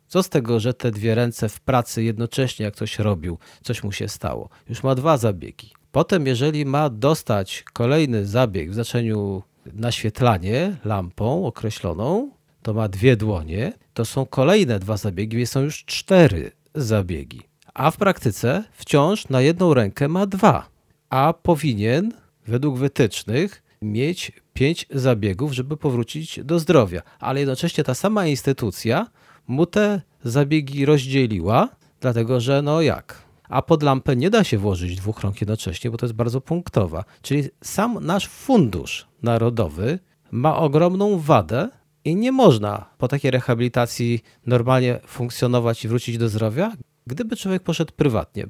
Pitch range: 110-155 Hz